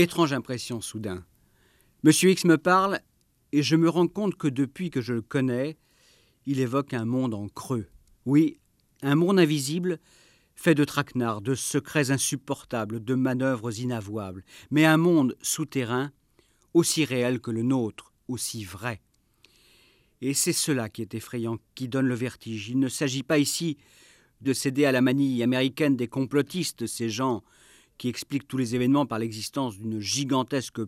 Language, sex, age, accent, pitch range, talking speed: French, male, 50-69, French, 115-145 Hz, 160 wpm